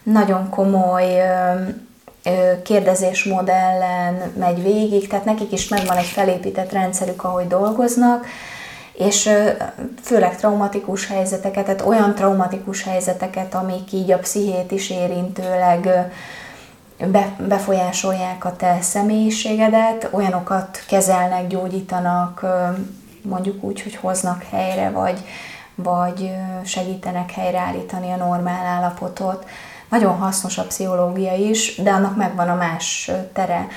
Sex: female